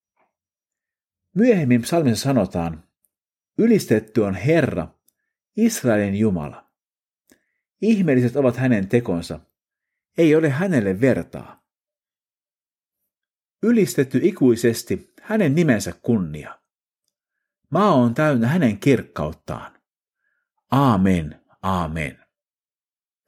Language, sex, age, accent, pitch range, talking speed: Finnish, male, 50-69, native, 100-160 Hz, 70 wpm